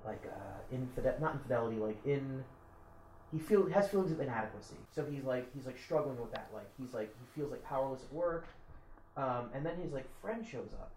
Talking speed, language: 210 wpm, English